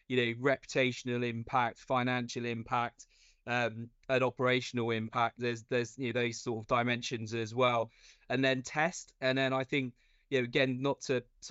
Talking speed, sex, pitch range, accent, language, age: 170 wpm, male, 120-135 Hz, British, English, 20-39